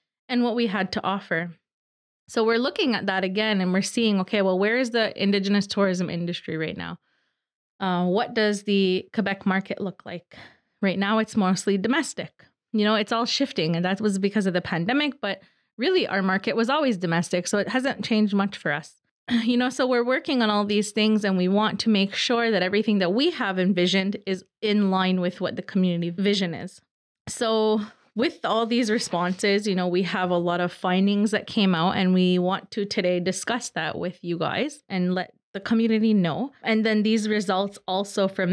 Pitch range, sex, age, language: 185-220 Hz, female, 20-39, English